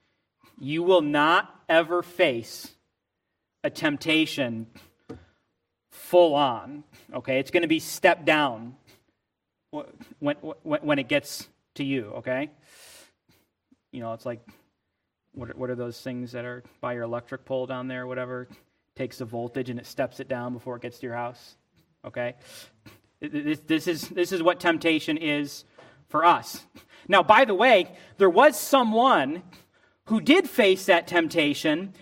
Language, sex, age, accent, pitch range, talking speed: English, male, 30-49, American, 125-195 Hz, 145 wpm